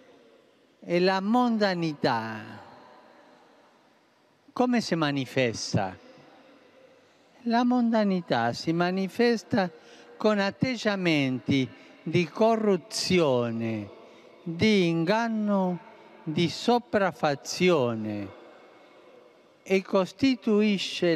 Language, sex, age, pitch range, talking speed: Italian, male, 50-69, 150-215 Hz, 55 wpm